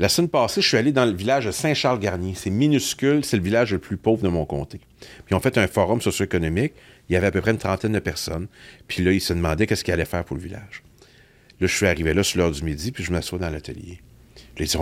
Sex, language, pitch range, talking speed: male, French, 90-120 Hz, 270 wpm